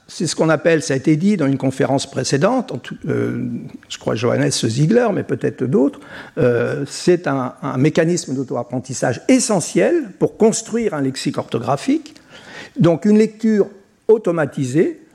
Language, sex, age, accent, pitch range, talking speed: French, male, 60-79, French, 140-220 Hz, 135 wpm